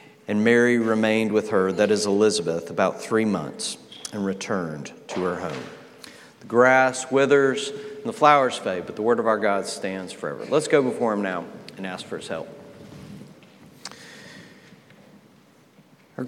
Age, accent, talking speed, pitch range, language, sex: 40-59, American, 155 wpm, 105-125 Hz, English, male